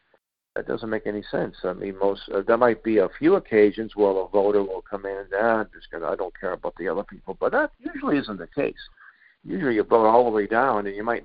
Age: 50-69